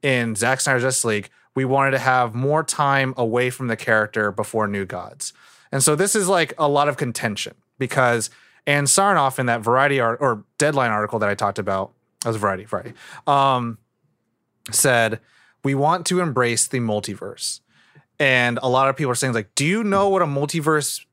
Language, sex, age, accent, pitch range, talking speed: English, male, 30-49, American, 115-145 Hz, 185 wpm